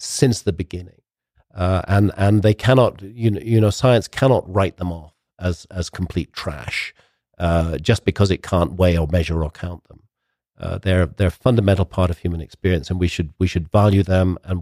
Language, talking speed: English, 200 wpm